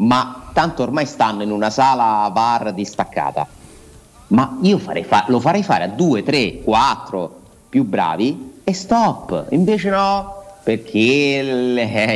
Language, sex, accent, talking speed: Italian, male, native, 140 wpm